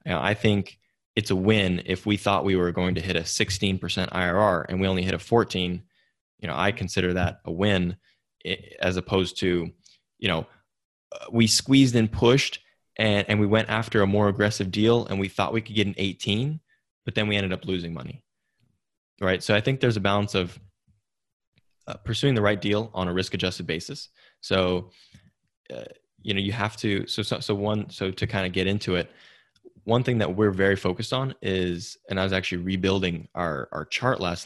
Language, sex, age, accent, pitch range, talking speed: English, male, 20-39, American, 90-105 Hz, 200 wpm